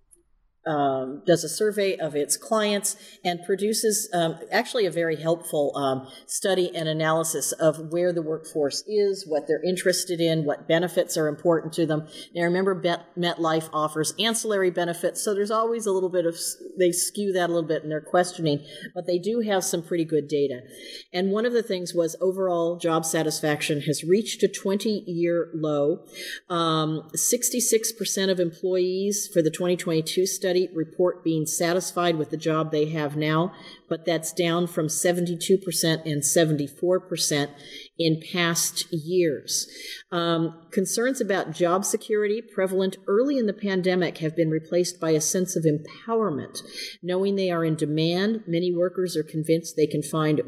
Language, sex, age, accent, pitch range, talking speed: English, female, 40-59, American, 155-190 Hz, 165 wpm